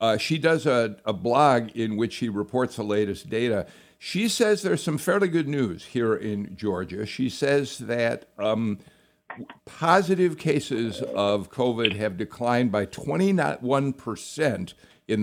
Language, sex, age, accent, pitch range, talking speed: English, male, 60-79, American, 100-130 Hz, 145 wpm